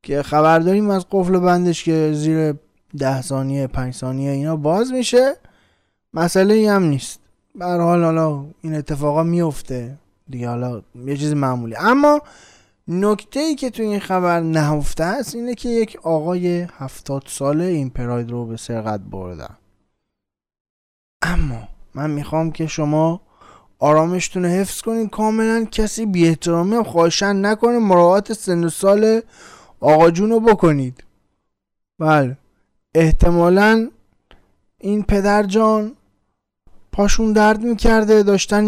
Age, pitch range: 20-39, 155-215 Hz